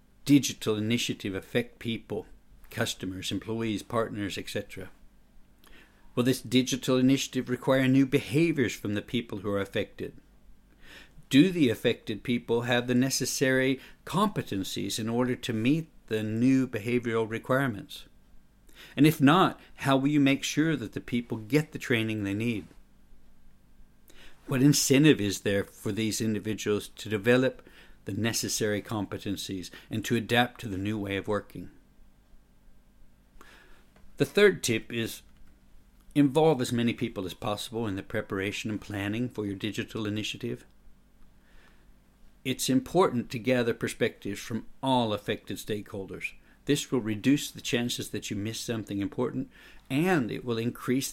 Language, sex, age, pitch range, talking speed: English, male, 60-79, 105-130 Hz, 135 wpm